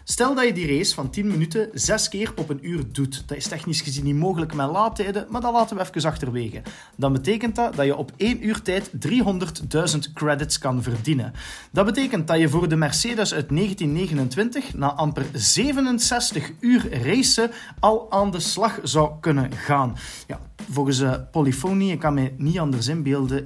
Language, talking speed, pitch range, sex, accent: Dutch, 180 wpm, 140-230 Hz, male, Dutch